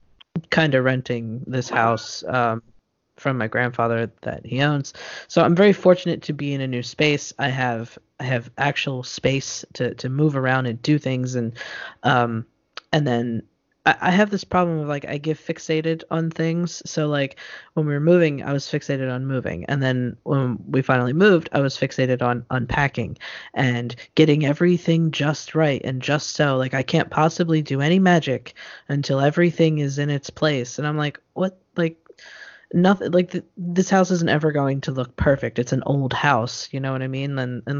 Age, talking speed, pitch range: 20-39, 190 wpm, 130-155 Hz